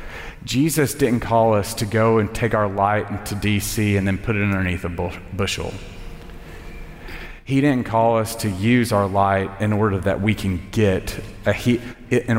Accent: American